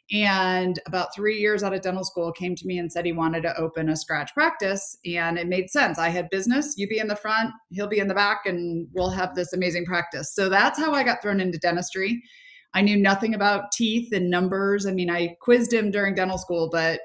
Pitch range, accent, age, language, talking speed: 175-205 Hz, American, 20-39, English, 235 wpm